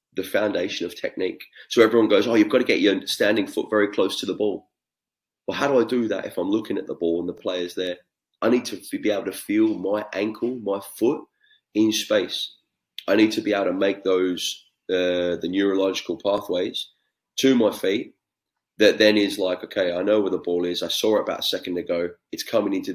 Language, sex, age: English, male, 20-39